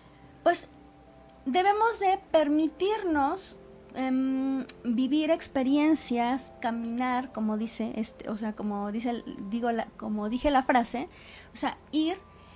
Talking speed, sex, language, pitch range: 105 wpm, female, Spanish, 230-290 Hz